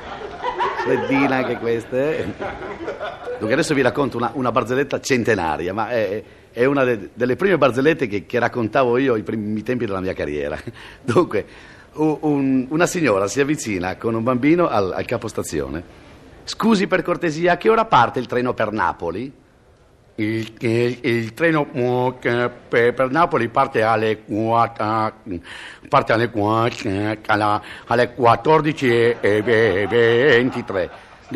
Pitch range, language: 115-145 Hz, Italian